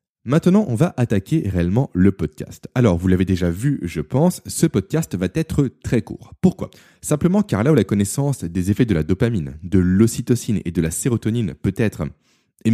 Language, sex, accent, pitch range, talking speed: French, male, French, 90-145 Hz, 190 wpm